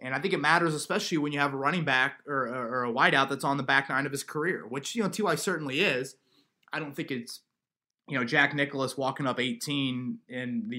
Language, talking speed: English, 245 wpm